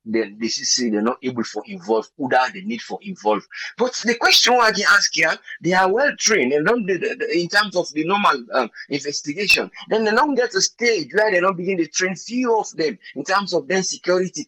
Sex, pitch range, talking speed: male, 145-220 Hz, 225 wpm